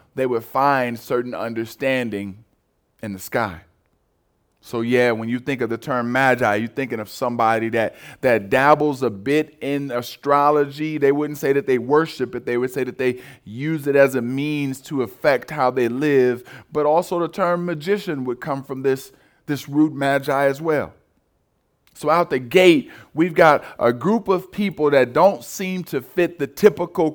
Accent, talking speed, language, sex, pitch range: American, 180 wpm, English, male, 115-150 Hz